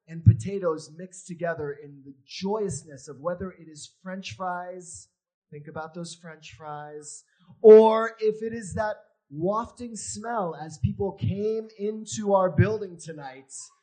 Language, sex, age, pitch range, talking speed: English, male, 30-49, 160-220 Hz, 140 wpm